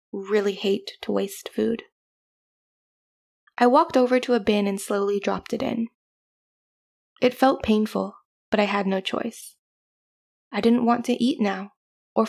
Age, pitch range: 20-39, 205-240 Hz